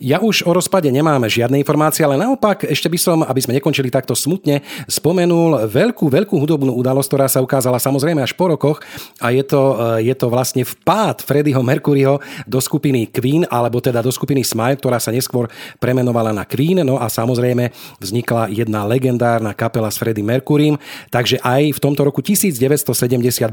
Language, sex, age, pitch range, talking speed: Slovak, male, 40-59, 120-150 Hz, 175 wpm